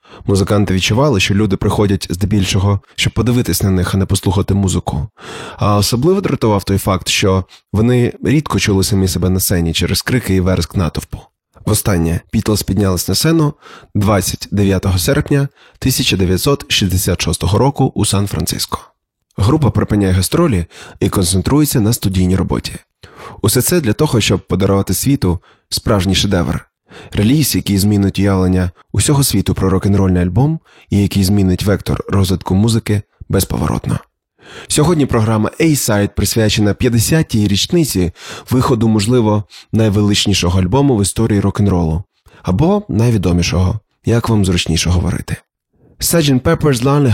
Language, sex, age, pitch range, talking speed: Ukrainian, male, 20-39, 95-115 Hz, 125 wpm